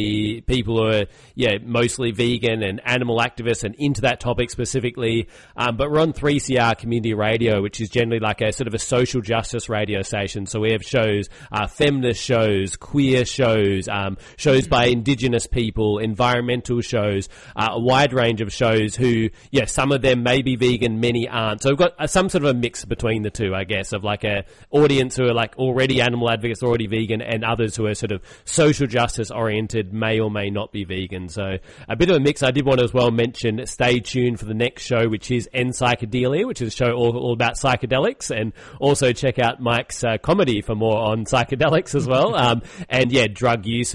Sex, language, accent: male, English, Australian